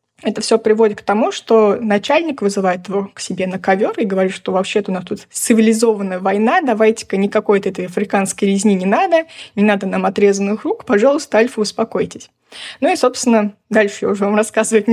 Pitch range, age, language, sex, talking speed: 195-225 Hz, 20-39, Russian, female, 180 wpm